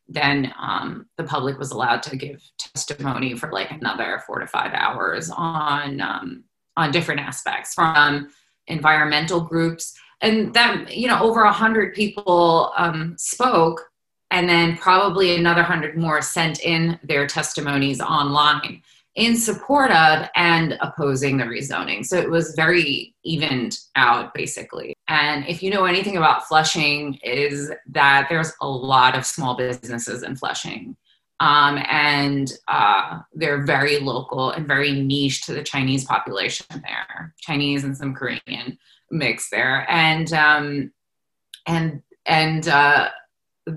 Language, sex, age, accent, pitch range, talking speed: English, female, 30-49, American, 140-165 Hz, 140 wpm